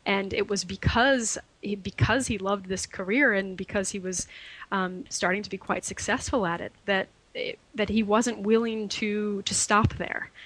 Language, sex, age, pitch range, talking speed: English, female, 20-39, 190-225 Hz, 185 wpm